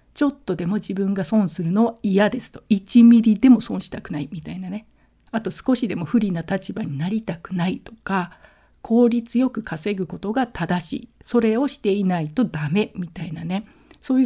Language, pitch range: Japanese, 190-250 Hz